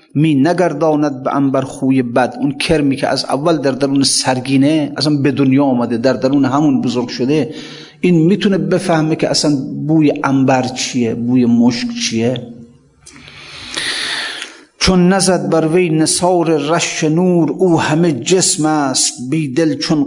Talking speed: 145 wpm